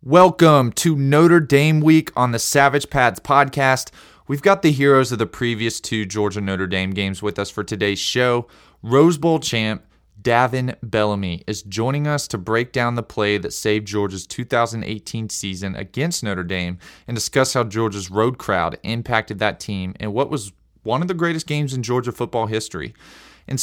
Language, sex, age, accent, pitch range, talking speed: English, male, 20-39, American, 95-120 Hz, 175 wpm